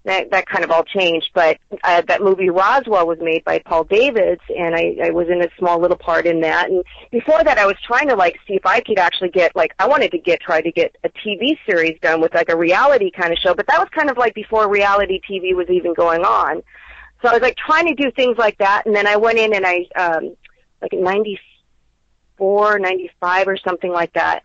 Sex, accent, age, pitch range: female, American, 40-59, 170-215 Hz